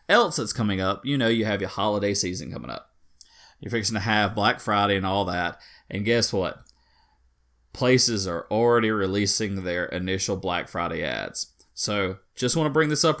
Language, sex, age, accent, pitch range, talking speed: English, male, 30-49, American, 105-125 Hz, 185 wpm